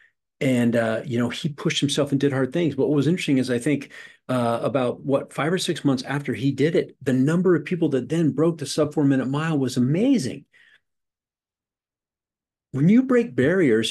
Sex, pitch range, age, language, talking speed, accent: male, 115-155 Hz, 40-59, English, 205 wpm, American